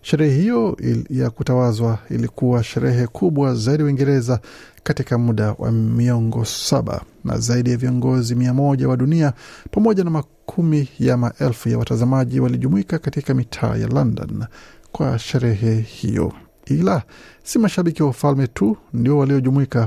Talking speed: 135 wpm